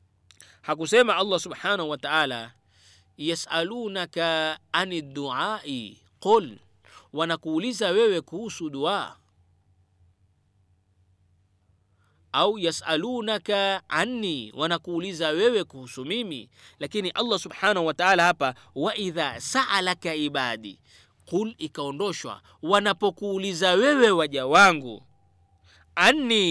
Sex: male